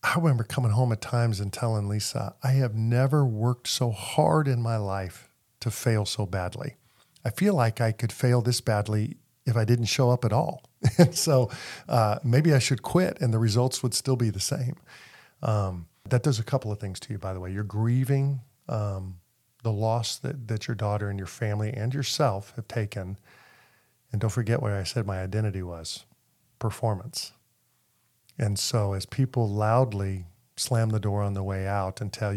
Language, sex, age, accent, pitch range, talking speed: English, male, 50-69, American, 100-125 Hz, 195 wpm